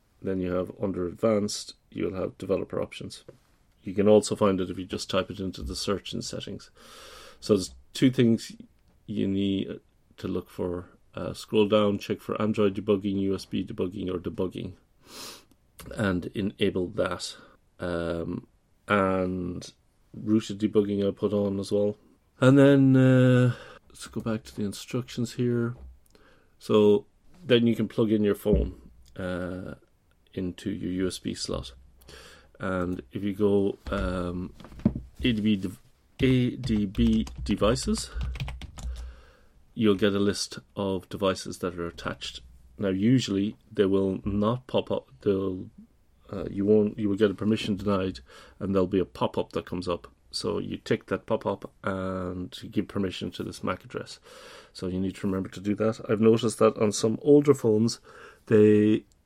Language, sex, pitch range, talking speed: English, male, 90-110 Hz, 150 wpm